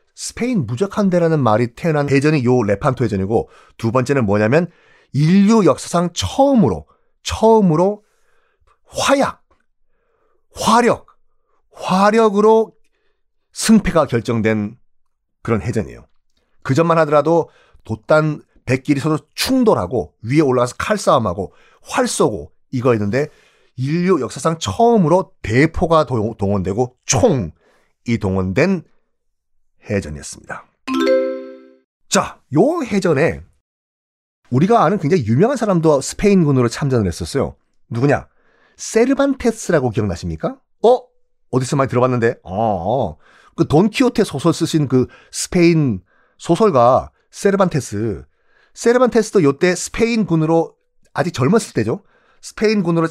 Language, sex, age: Korean, male, 40-59